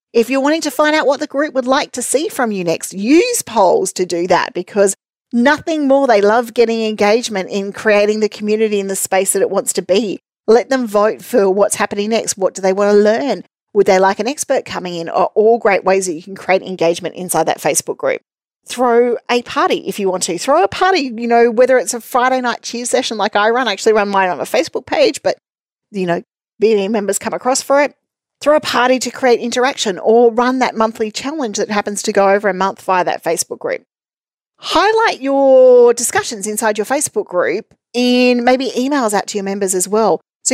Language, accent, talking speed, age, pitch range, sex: English, Australian, 225 wpm, 40-59, 195-255 Hz, female